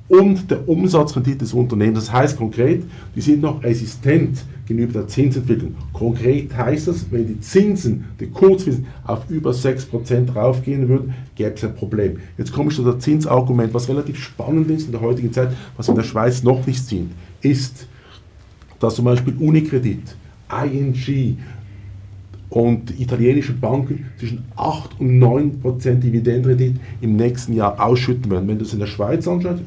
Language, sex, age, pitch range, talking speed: German, male, 50-69, 115-140 Hz, 160 wpm